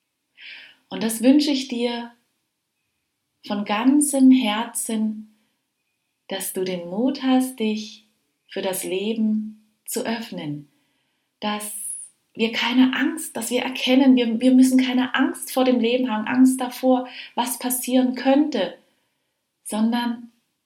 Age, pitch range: 30-49, 180-250 Hz